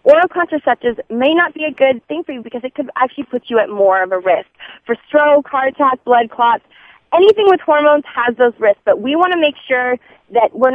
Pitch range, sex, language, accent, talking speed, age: 215-295 Hz, female, English, American, 230 wpm, 20-39